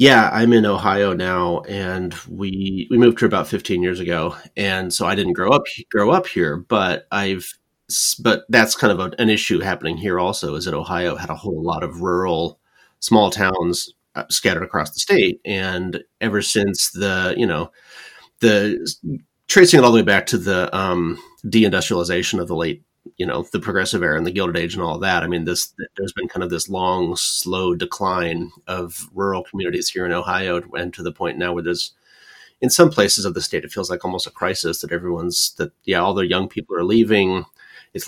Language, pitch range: English, 90-105 Hz